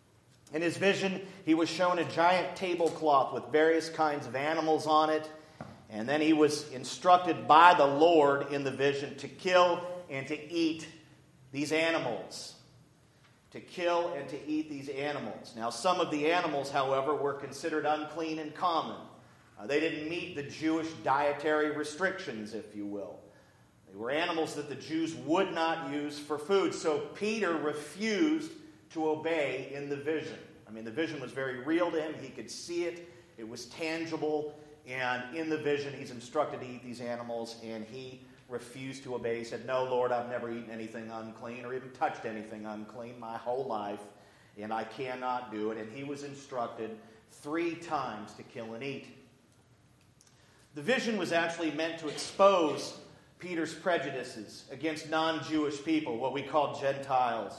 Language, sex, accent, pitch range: English, male, American, 125-160 Hz